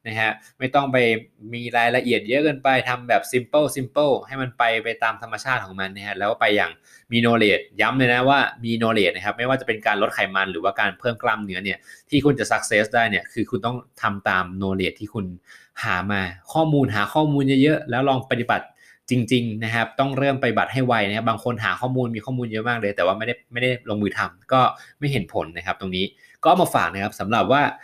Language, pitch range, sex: Thai, 105-135 Hz, male